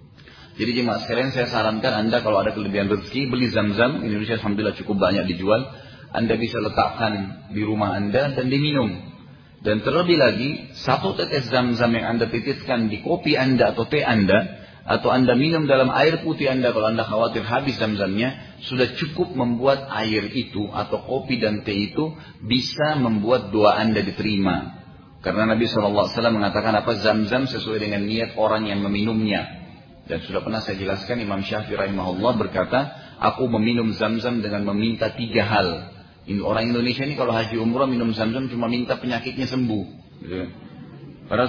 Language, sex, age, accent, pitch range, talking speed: Indonesian, male, 40-59, native, 110-130 Hz, 155 wpm